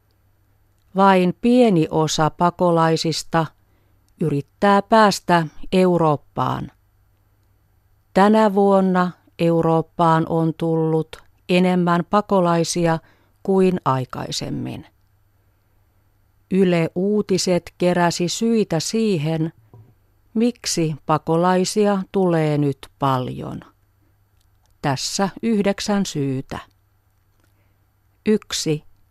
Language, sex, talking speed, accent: Finnish, female, 60 wpm, native